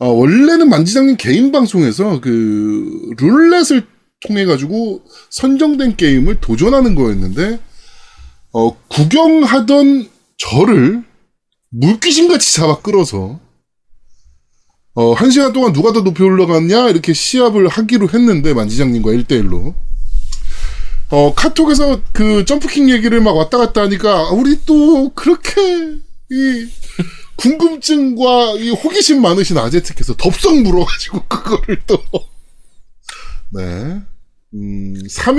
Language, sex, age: Korean, male, 20-39